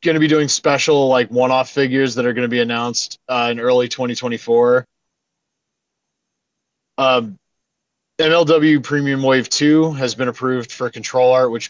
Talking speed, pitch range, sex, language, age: 155 wpm, 120-145 Hz, male, English, 20-39